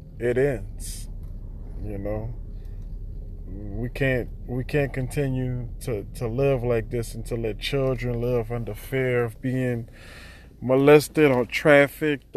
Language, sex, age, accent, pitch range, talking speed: English, male, 20-39, American, 105-130 Hz, 125 wpm